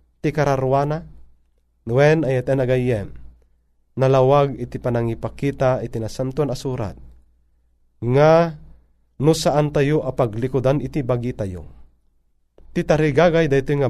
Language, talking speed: Filipino, 100 wpm